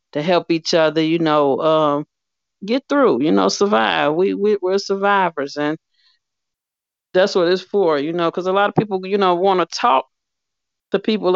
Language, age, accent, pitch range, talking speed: English, 40-59, American, 150-180 Hz, 190 wpm